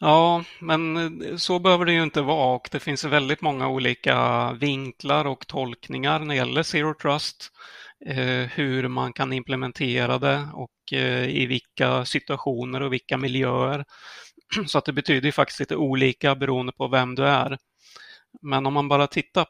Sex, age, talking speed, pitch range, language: male, 30-49, 160 wpm, 125-145 Hz, Swedish